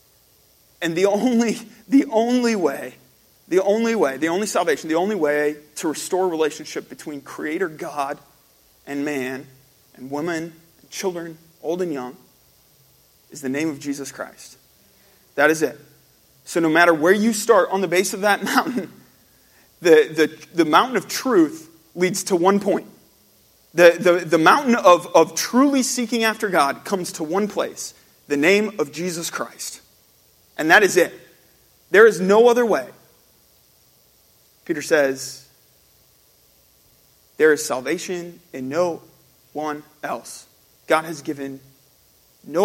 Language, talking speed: English, 145 wpm